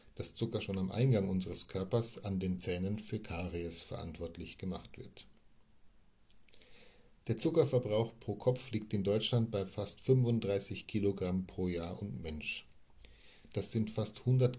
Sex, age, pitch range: male, 50-69, 95-115 Hz